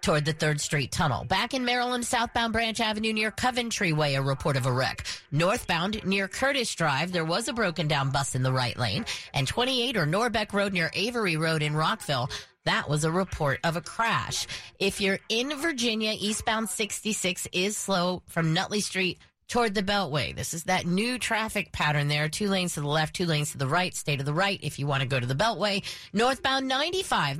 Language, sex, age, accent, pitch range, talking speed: English, female, 30-49, American, 155-225 Hz, 205 wpm